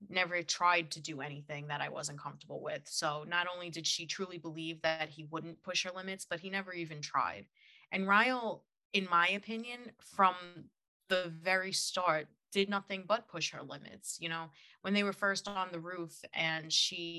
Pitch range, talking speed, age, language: 155-180 Hz, 190 wpm, 20-39, English